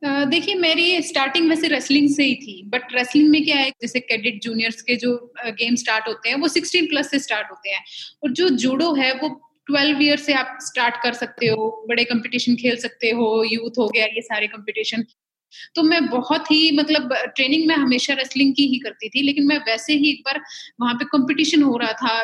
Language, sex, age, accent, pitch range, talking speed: Hindi, female, 30-49, native, 240-295 Hz, 215 wpm